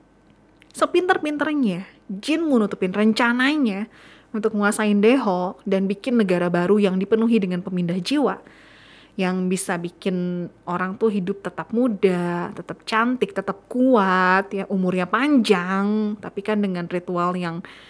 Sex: female